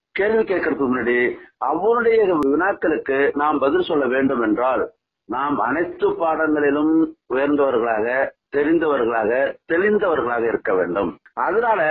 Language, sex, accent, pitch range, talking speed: Tamil, male, native, 145-240 Hz, 95 wpm